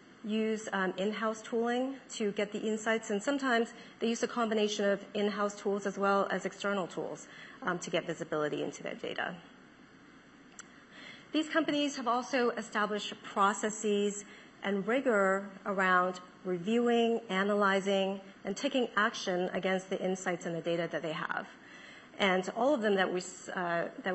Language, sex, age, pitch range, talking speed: English, female, 40-59, 180-225 Hz, 140 wpm